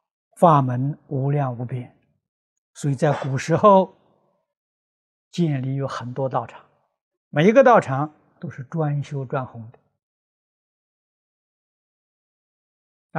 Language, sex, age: Chinese, male, 60-79